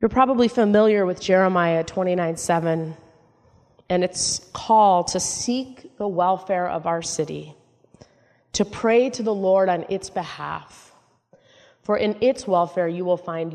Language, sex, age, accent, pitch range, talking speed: English, female, 30-49, American, 165-210 Hz, 135 wpm